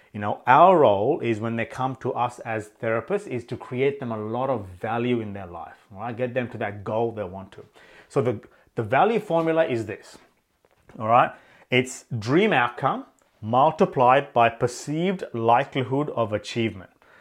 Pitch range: 115-135 Hz